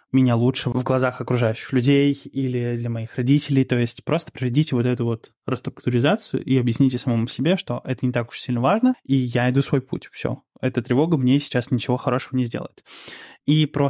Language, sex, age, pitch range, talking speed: Russian, male, 20-39, 125-145 Hz, 195 wpm